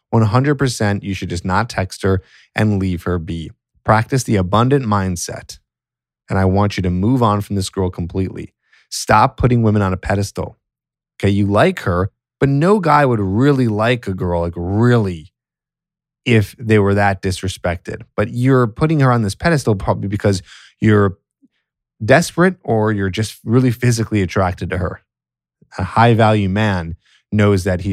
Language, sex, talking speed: English, male, 165 wpm